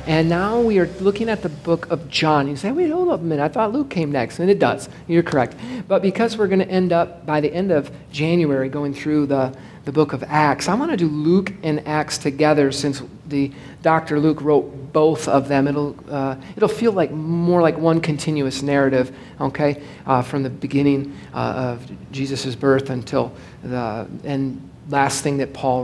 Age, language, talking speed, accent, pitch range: 50-69, English, 205 wpm, American, 140-180 Hz